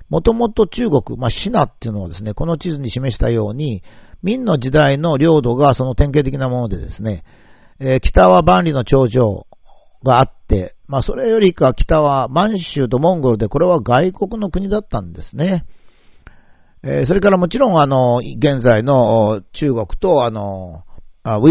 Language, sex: Japanese, male